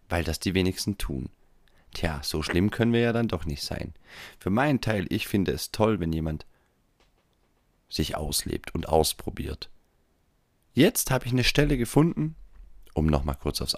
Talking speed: 165 wpm